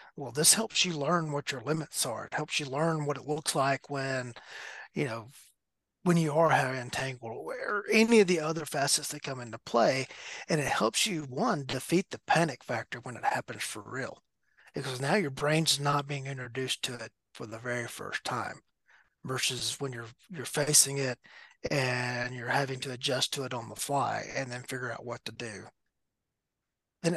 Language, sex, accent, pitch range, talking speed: English, male, American, 125-155 Hz, 190 wpm